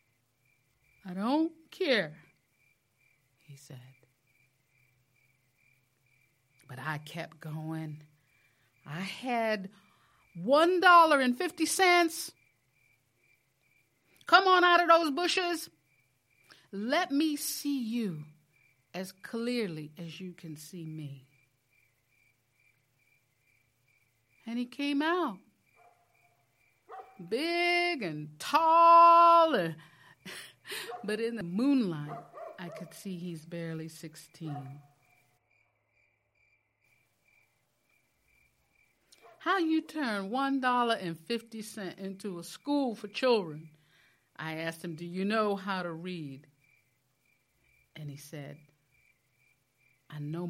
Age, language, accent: 50-69, English, American